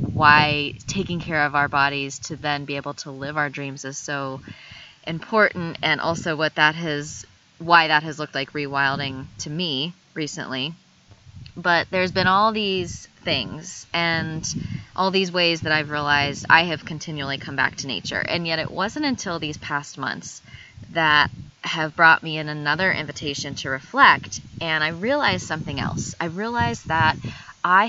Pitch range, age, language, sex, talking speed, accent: 140-170 Hz, 20-39, English, female, 165 wpm, American